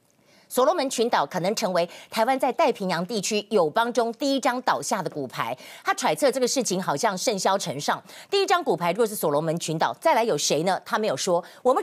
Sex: female